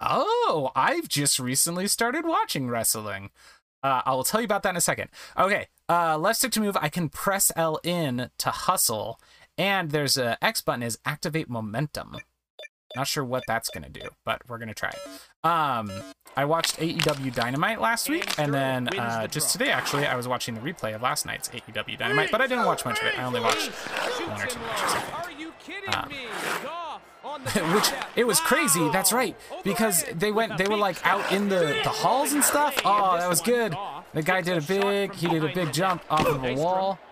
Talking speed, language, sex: 195 wpm, English, male